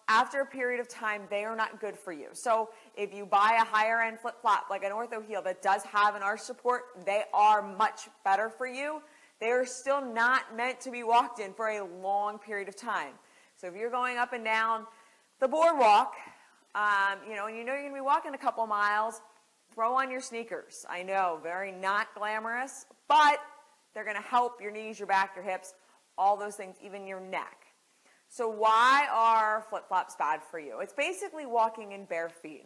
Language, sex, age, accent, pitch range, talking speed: English, female, 30-49, American, 190-245 Hz, 210 wpm